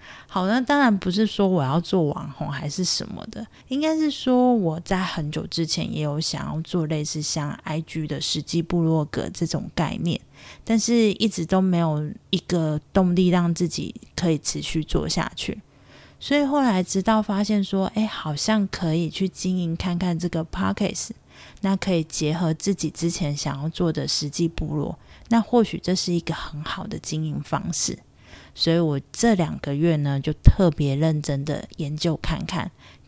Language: Chinese